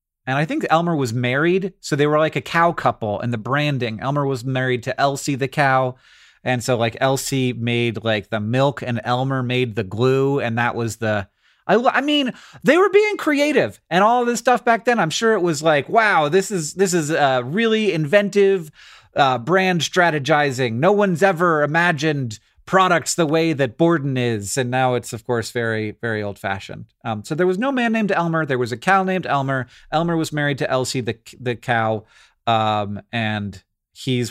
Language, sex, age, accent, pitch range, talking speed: English, male, 30-49, American, 120-165 Hz, 200 wpm